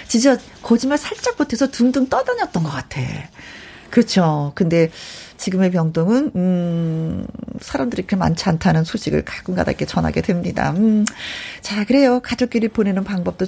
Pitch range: 190-280 Hz